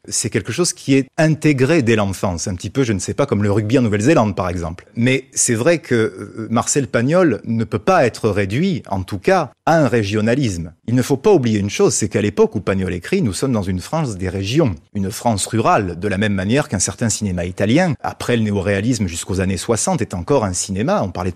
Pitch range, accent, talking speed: 100-140 Hz, French, 230 wpm